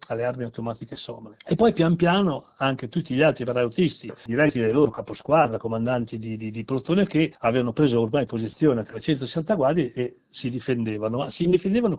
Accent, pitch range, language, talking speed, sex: native, 120-165 Hz, Italian, 180 wpm, male